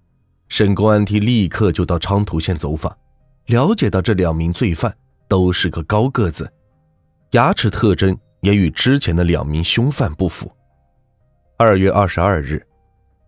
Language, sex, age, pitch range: Chinese, male, 20-39, 85-110 Hz